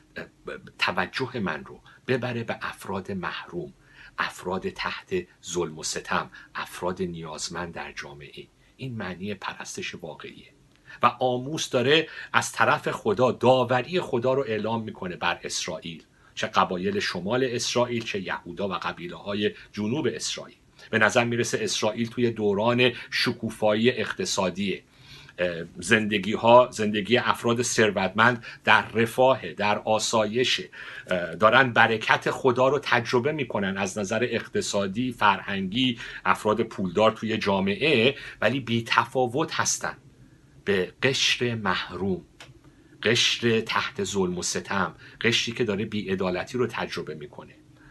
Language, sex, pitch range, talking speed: Persian, male, 105-125 Hz, 115 wpm